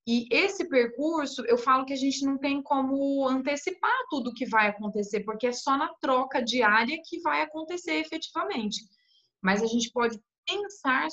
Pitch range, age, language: 200-270 Hz, 20-39, Portuguese